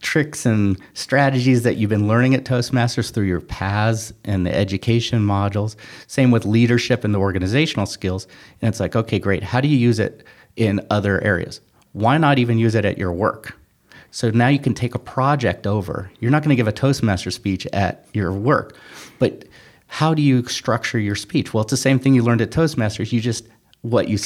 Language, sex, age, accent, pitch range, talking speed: English, male, 30-49, American, 100-120 Hz, 205 wpm